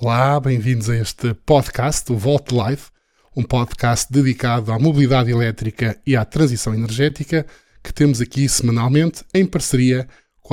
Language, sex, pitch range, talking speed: Portuguese, male, 120-150 Hz, 140 wpm